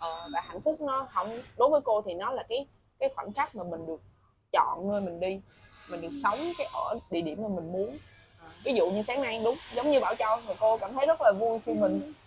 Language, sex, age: Vietnamese, female, 20-39